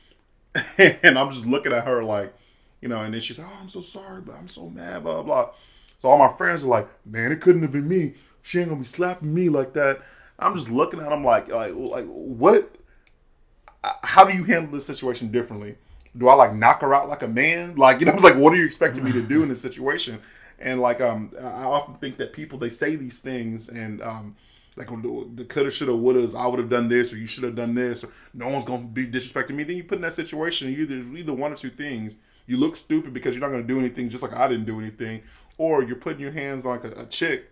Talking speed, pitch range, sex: 250 wpm, 115-145 Hz, male